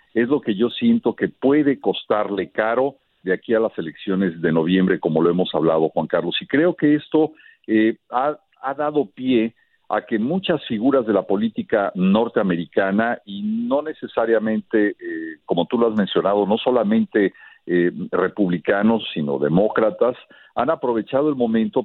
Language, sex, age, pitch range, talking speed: Spanish, male, 50-69, 105-160 Hz, 160 wpm